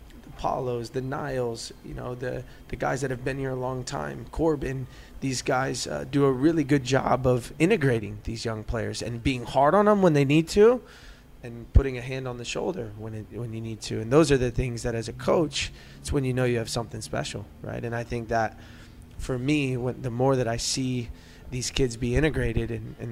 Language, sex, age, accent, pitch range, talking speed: English, male, 20-39, American, 115-135 Hz, 225 wpm